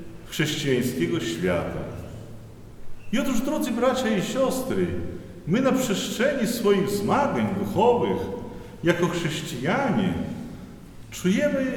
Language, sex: Polish, male